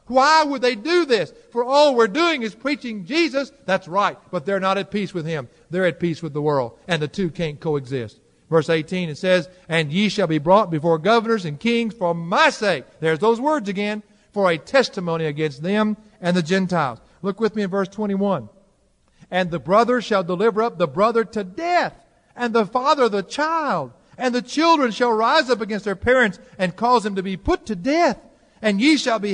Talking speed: 210 wpm